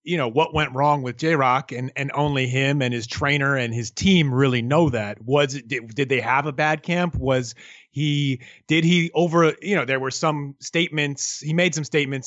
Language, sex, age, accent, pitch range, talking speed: English, male, 30-49, American, 145-190 Hz, 220 wpm